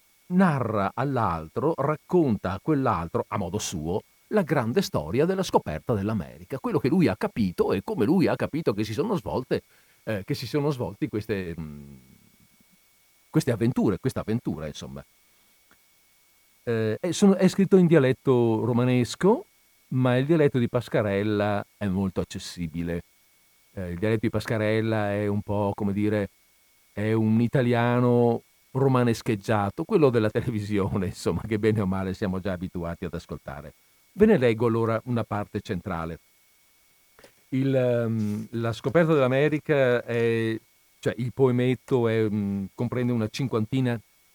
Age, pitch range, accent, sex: 50-69, 100-125 Hz, native, male